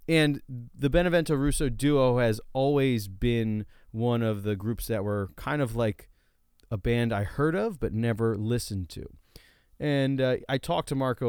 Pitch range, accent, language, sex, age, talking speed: 95-115 Hz, American, English, male, 30-49, 165 wpm